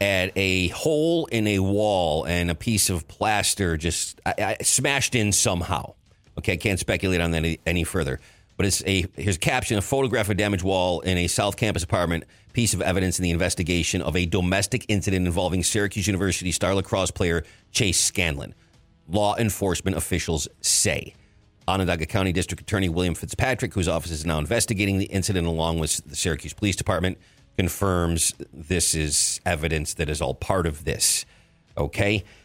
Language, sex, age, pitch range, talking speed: English, male, 40-59, 85-105 Hz, 170 wpm